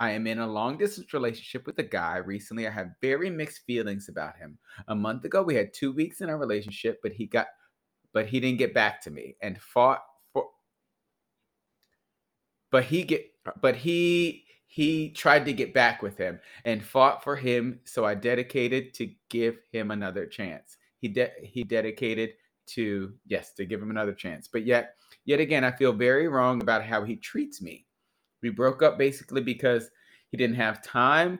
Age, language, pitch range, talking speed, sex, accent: 30-49, English, 110-140 Hz, 185 wpm, male, American